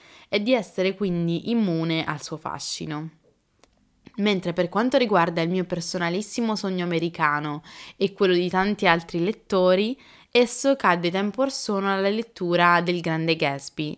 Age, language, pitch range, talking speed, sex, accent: 10-29, Italian, 155-195 Hz, 135 wpm, female, native